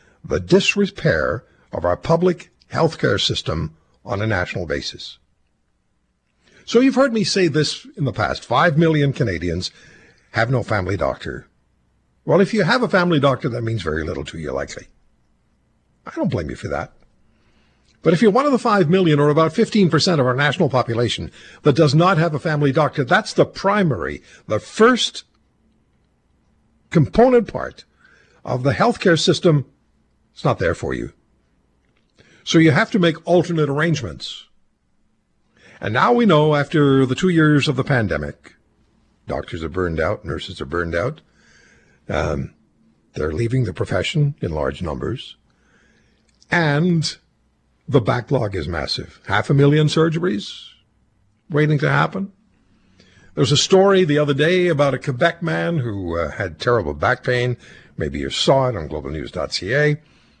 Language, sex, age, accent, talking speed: English, male, 60-79, American, 155 wpm